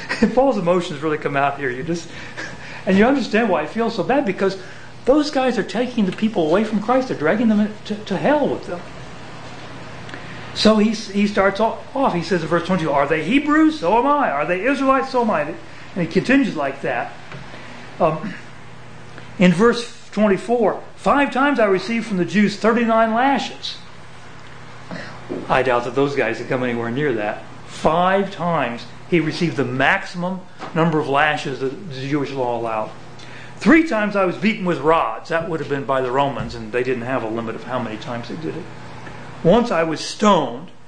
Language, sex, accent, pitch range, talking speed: English, male, American, 150-215 Hz, 190 wpm